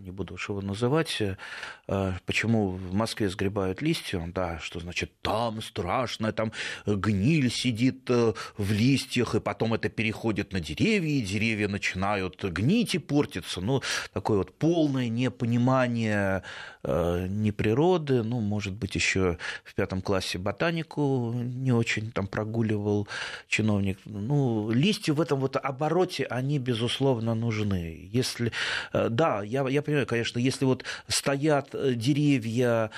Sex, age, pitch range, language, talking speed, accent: male, 30-49, 100-130 Hz, Russian, 125 wpm, native